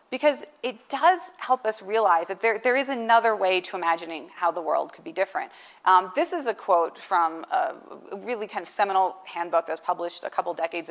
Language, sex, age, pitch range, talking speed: English, female, 30-49, 175-230 Hz, 210 wpm